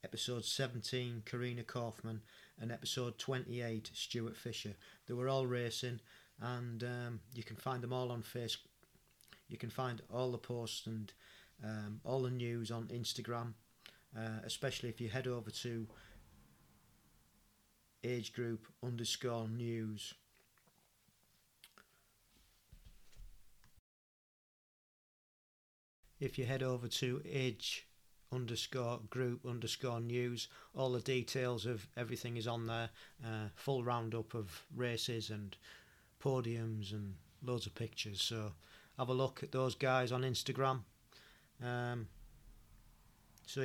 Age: 40-59